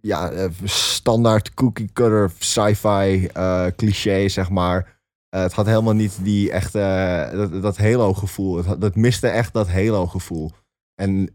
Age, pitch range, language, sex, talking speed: 20-39, 95-110 Hz, Dutch, male, 150 wpm